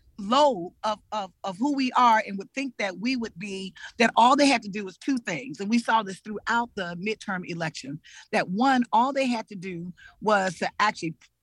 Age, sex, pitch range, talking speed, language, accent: 40-59, female, 205-275 Hz, 215 wpm, English, American